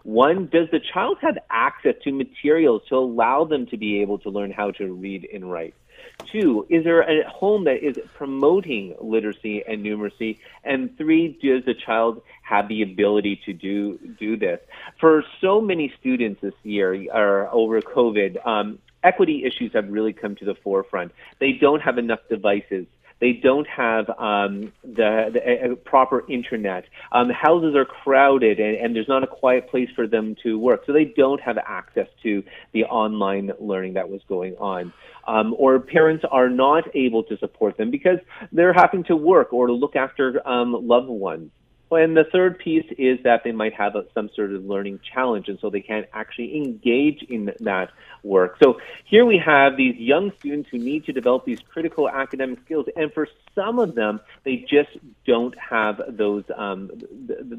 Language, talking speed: English, 180 wpm